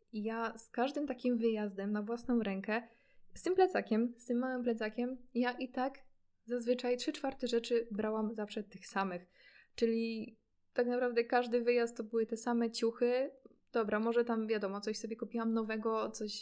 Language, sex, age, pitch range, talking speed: Polish, female, 20-39, 215-240 Hz, 165 wpm